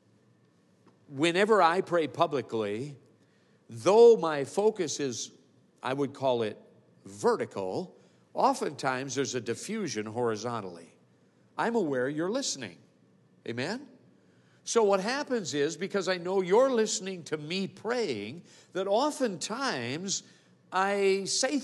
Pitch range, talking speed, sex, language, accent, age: 165-245 Hz, 115 wpm, male, English, American, 50-69